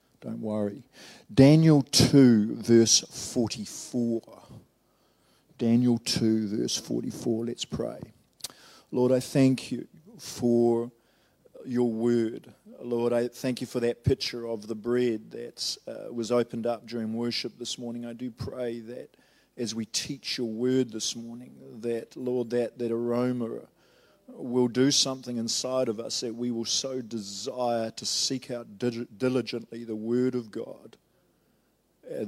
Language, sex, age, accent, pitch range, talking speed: English, male, 50-69, Australian, 115-130 Hz, 135 wpm